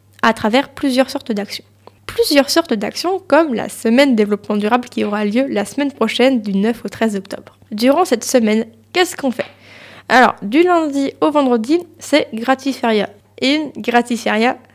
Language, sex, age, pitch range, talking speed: French, female, 20-39, 220-285 Hz, 160 wpm